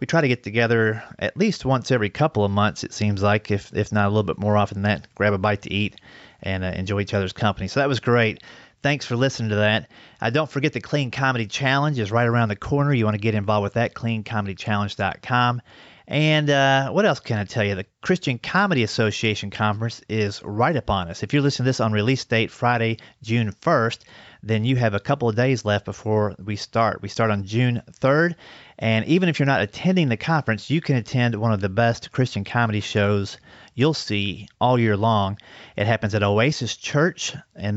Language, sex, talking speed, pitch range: English, male, 220 wpm, 105-130 Hz